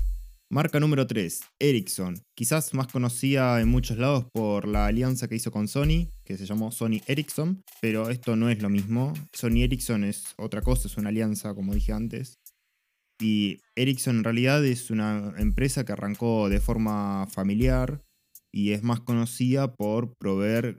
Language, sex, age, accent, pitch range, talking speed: Spanish, male, 20-39, Argentinian, 100-125 Hz, 165 wpm